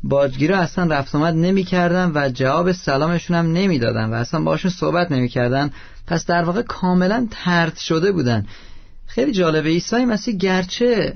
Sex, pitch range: male, 135-175 Hz